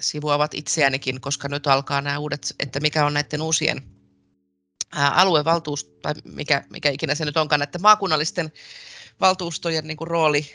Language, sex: Finnish, female